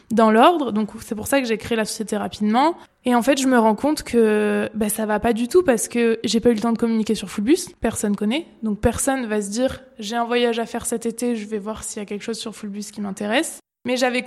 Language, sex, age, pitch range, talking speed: French, female, 20-39, 220-250 Hz, 275 wpm